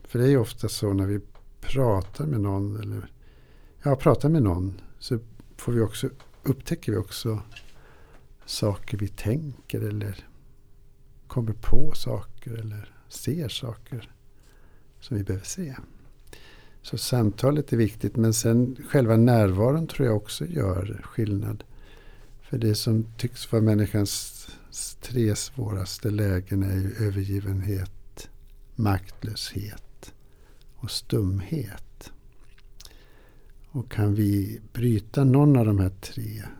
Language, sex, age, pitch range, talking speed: Swedish, male, 60-79, 105-125 Hz, 120 wpm